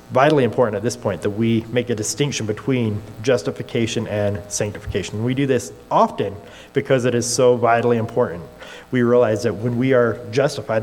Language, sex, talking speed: English, male, 170 wpm